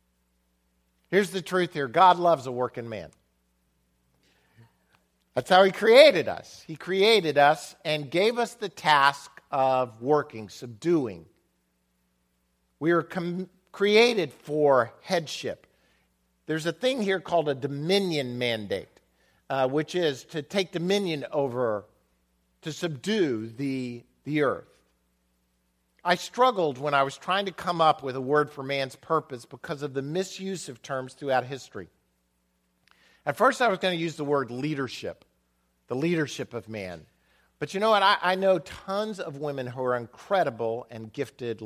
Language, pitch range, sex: English, 110-170 Hz, male